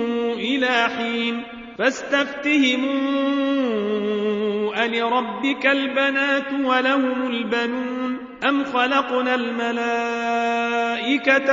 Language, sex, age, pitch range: Arabic, male, 40-59, 235-275 Hz